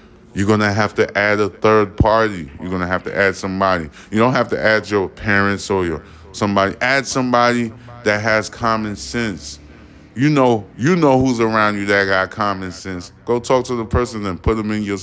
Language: English